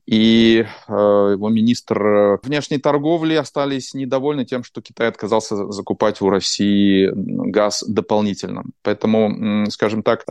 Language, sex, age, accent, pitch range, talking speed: Russian, male, 30-49, native, 105-135 Hz, 110 wpm